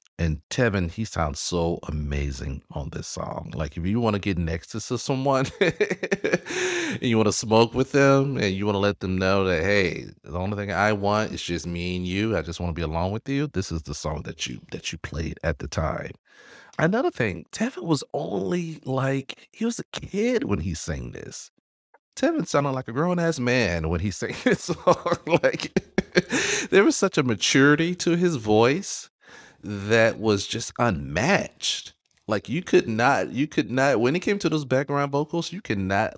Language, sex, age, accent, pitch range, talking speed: English, male, 40-59, American, 85-130 Hz, 195 wpm